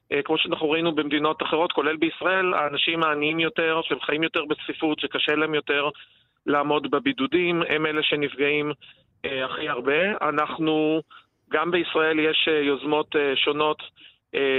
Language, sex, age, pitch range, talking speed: Hebrew, male, 40-59, 145-165 Hz, 135 wpm